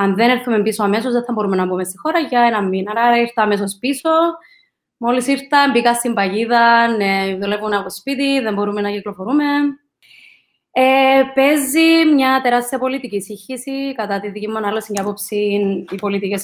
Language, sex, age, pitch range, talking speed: Greek, female, 20-39, 205-265 Hz, 170 wpm